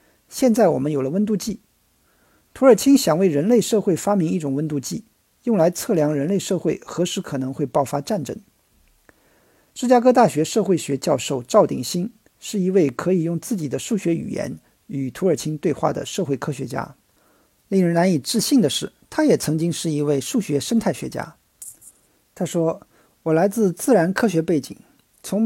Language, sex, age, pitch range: Chinese, male, 50-69, 145-205 Hz